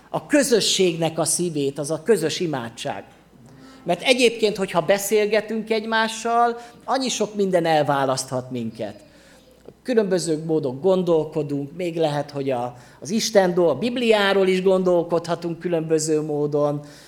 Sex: male